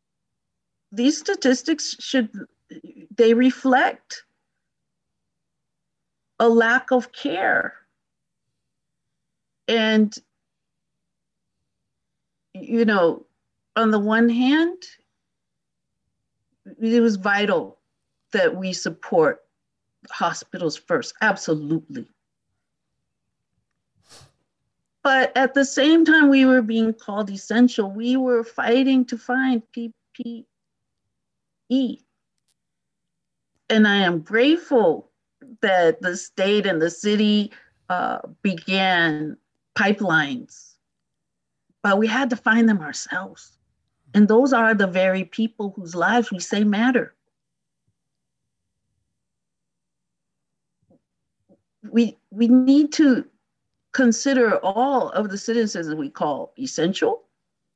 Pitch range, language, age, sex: 205-260 Hz, English, 50-69, female